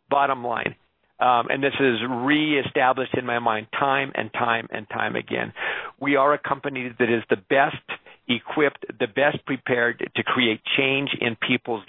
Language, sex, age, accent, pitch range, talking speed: English, male, 50-69, American, 125-150 Hz, 165 wpm